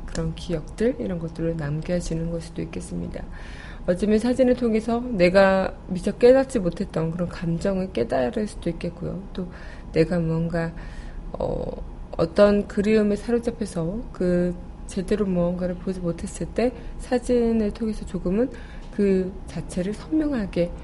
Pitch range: 165-220 Hz